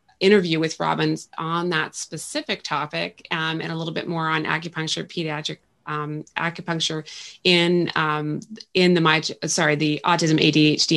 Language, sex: English, female